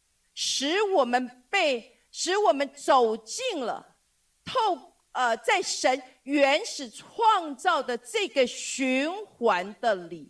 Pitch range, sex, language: 255-370 Hz, female, Chinese